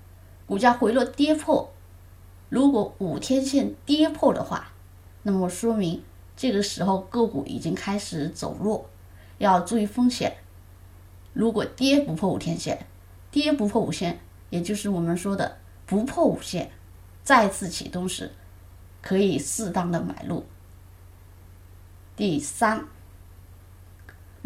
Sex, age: female, 20-39